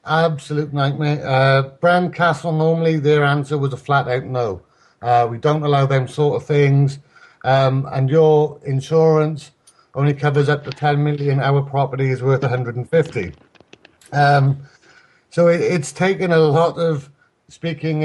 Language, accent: English, British